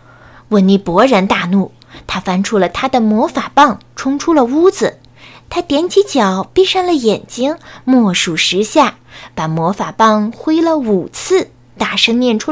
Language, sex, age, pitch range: Chinese, female, 20-39, 170-255 Hz